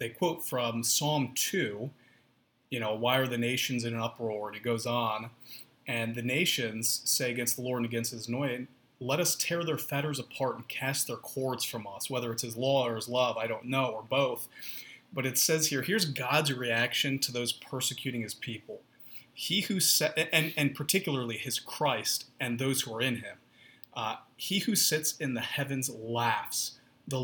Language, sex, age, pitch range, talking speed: English, male, 30-49, 120-145 Hz, 195 wpm